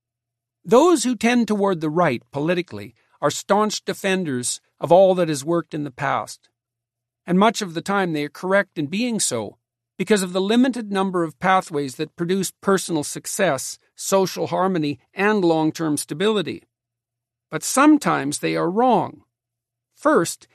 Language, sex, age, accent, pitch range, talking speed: English, male, 50-69, American, 140-205 Hz, 150 wpm